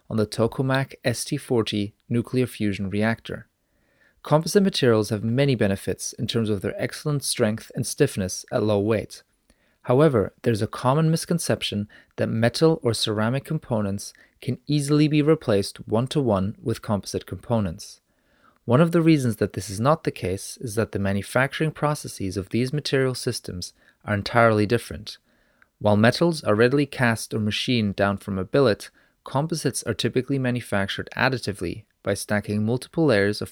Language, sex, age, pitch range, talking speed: English, male, 30-49, 105-135 Hz, 150 wpm